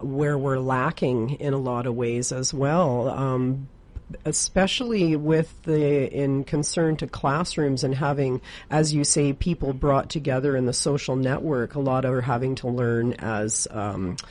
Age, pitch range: 40-59, 125-150 Hz